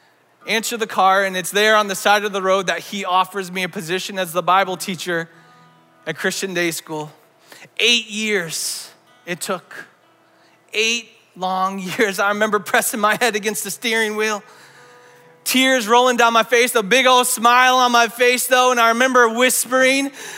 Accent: American